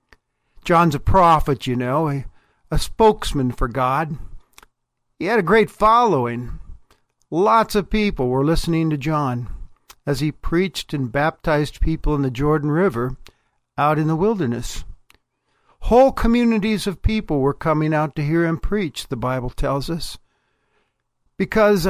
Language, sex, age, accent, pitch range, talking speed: English, male, 50-69, American, 135-190 Hz, 140 wpm